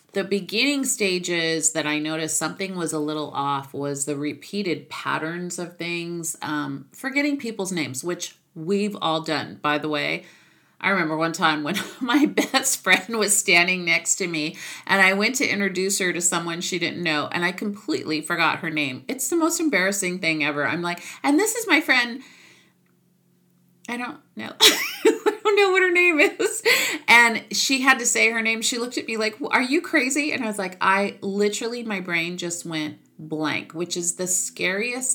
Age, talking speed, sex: 30-49, 185 wpm, female